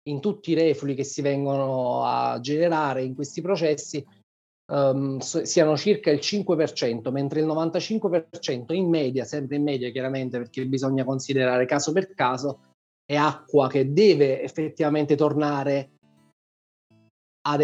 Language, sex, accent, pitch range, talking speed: Italian, male, native, 135-160 Hz, 130 wpm